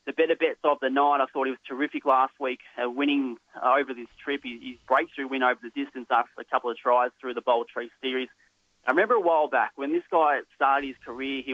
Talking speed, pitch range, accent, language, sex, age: 245 wpm, 125-145 Hz, Australian, English, male, 20-39